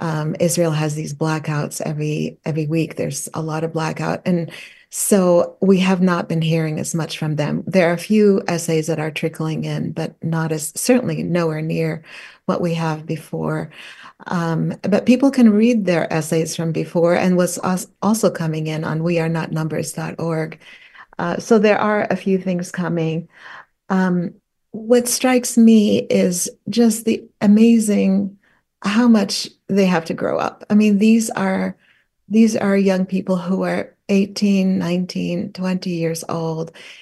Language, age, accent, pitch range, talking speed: English, 40-59, American, 165-205 Hz, 155 wpm